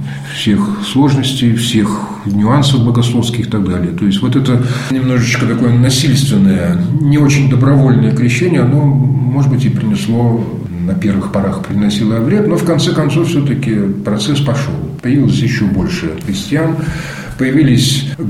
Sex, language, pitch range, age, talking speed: male, Russian, 100-140 Hz, 50-69, 135 wpm